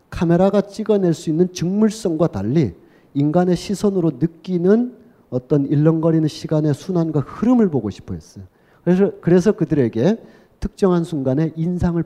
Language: Korean